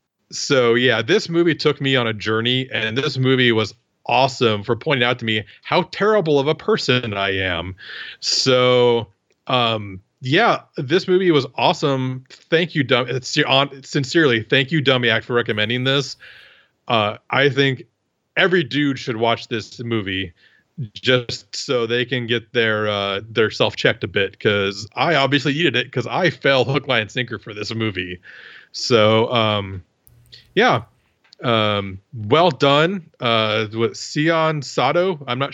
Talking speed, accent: 155 wpm, American